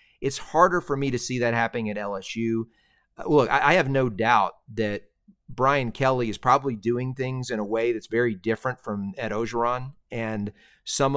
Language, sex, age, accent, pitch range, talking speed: English, male, 40-59, American, 110-135 Hz, 175 wpm